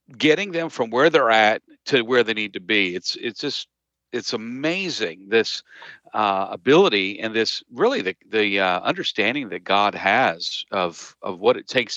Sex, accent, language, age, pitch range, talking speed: male, American, English, 50-69, 100-120 Hz, 175 wpm